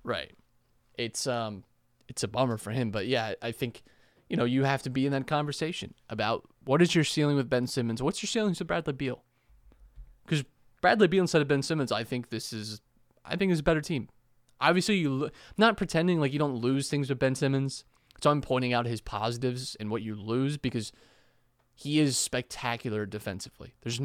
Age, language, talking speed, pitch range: 20-39, English, 205 wpm, 115-155 Hz